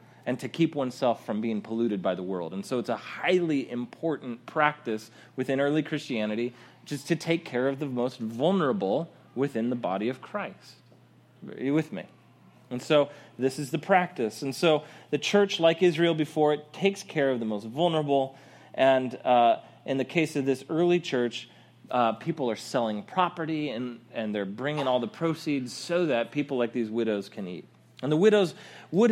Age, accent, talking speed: 30-49, American, 185 wpm